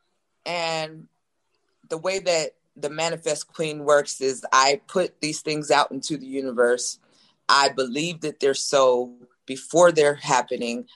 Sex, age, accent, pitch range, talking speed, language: female, 20-39, American, 135-165 Hz, 135 wpm, English